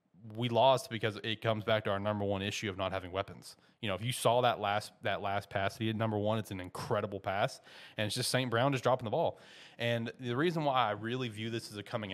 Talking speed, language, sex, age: 260 wpm, English, male, 30-49